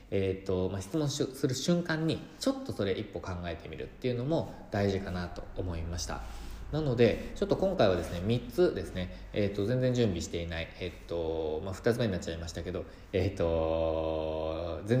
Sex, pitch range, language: male, 90-120 Hz, Japanese